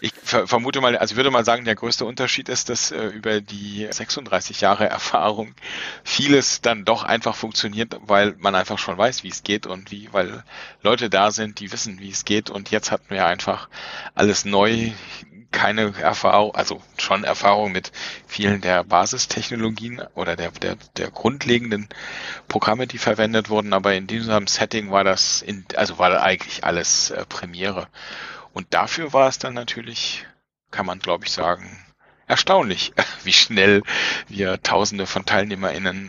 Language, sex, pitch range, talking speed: German, male, 100-115 Hz, 165 wpm